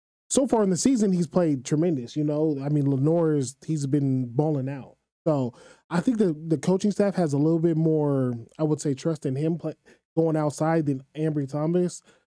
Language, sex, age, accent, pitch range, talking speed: English, male, 20-39, American, 145-185 Hz, 200 wpm